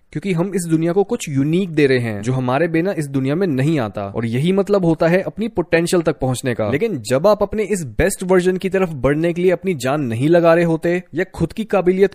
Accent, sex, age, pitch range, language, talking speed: native, male, 20-39, 145-190 Hz, Hindi, 245 wpm